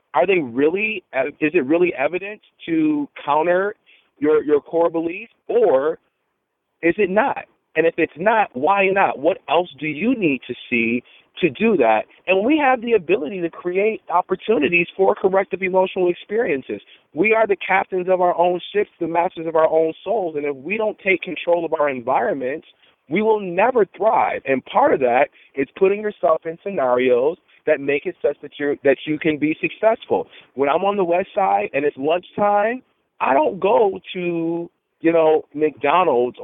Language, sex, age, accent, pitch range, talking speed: English, male, 40-59, American, 155-205 Hz, 180 wpm